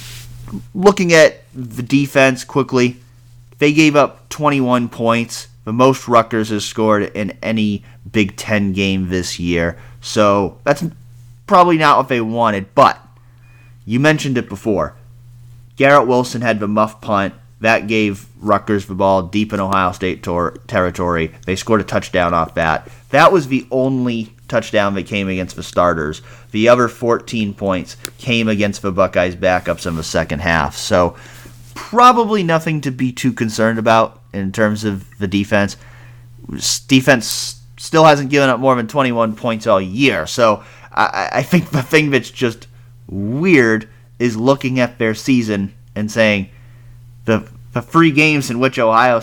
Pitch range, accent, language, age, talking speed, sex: 105-125 Hz, American, English, 30-49, 155 wpm, male